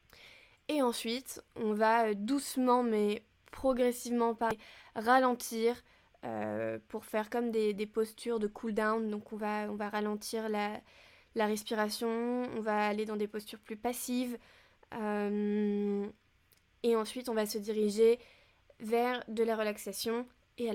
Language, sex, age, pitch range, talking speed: French, female, 20-39, 215-240 Hz, 135 wpm